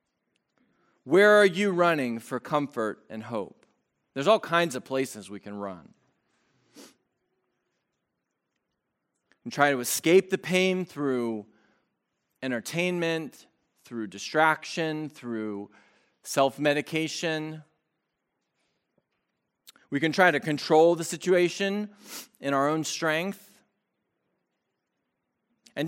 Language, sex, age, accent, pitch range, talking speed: English, male, 40-59, American, 155-205 Hz, 95 wpm